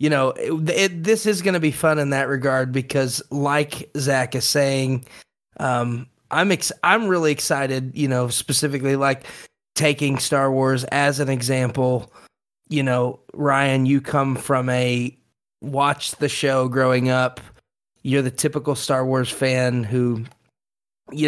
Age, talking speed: 30-49, 150 wpm